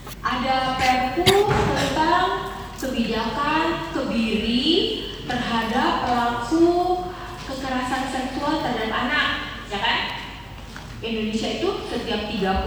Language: Malay